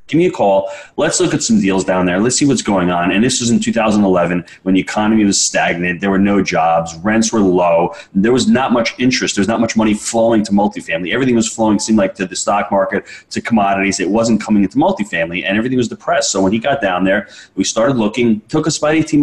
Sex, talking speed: male, 245 wpm